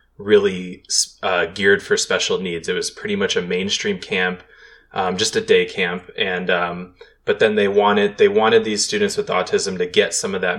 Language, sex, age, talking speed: English, male, 20-39, 200 wpm